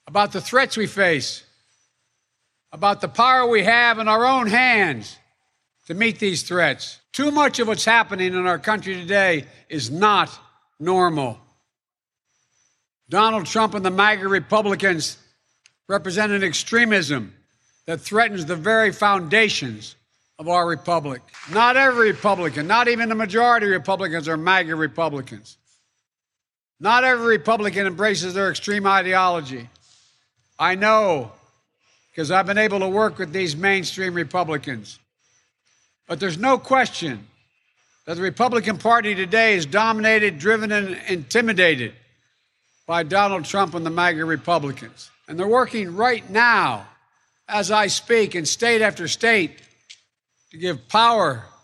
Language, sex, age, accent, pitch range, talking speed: English, male, 60-79, American, 155-220 Hz, 130 wpm